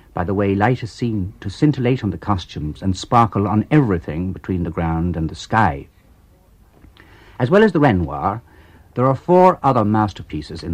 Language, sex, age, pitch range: English, male, 60-79, 90-115 Hz